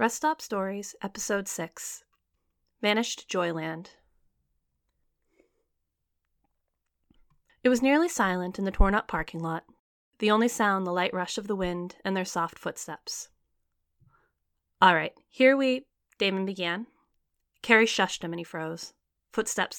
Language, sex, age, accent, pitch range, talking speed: English, female, 30-49, American, 170-255 Hz, 125 wpm